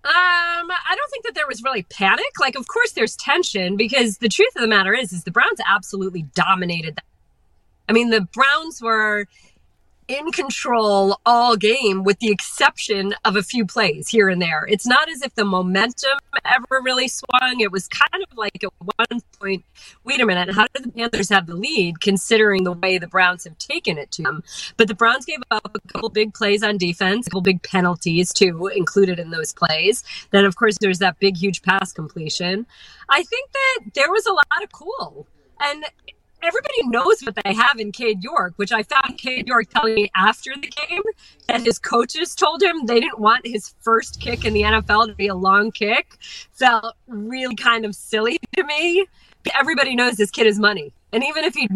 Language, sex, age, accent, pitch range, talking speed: English, female, 30-49, American, 195-255 Hz, 205 wpm